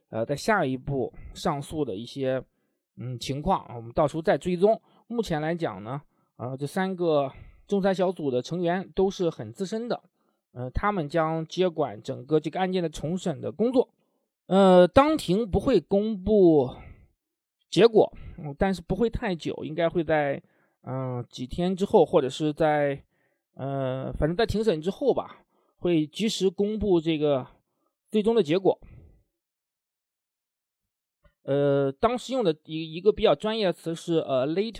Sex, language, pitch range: male, Chinese, 155-220 Hz